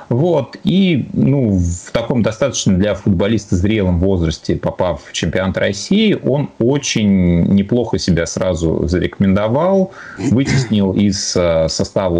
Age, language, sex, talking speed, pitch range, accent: 30-49, Russian, male, 115 wpm, 80-100 Hz, native